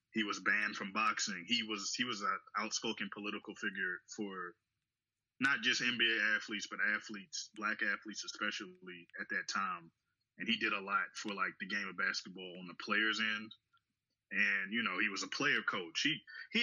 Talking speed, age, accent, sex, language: 185 wpm, 20-39, American, male, English